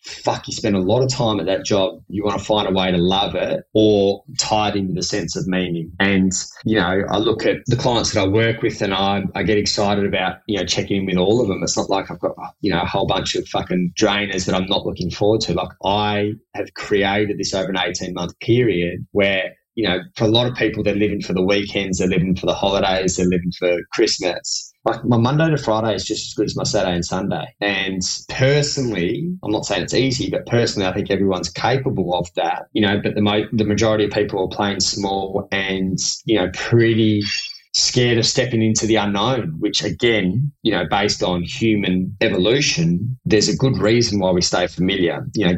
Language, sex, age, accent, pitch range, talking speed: English, male, 20-39, Australian, 95-110 Hz, 230 wpm